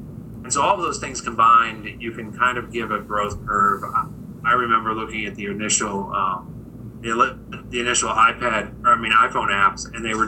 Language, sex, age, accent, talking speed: English, male, 30-49, American, 195 wpm